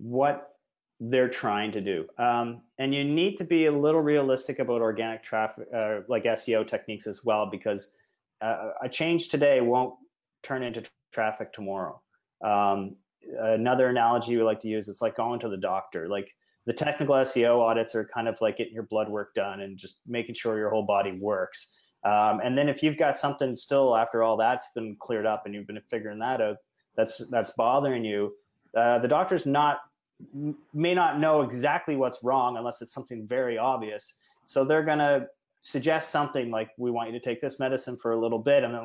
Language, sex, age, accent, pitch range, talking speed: English, male, 30-49, American, 115-140 Hz, 195 wpm